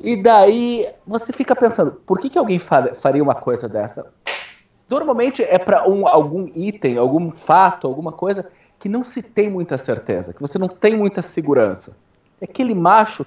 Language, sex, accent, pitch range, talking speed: Portuguese, male, Brazilian, 135-205 Hz, 165 wpm